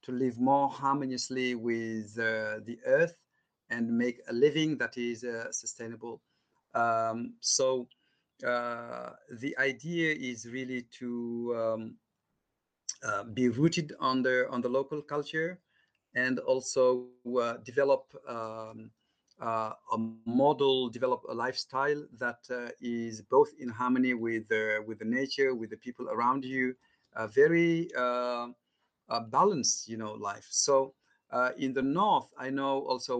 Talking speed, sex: 135 wpm, male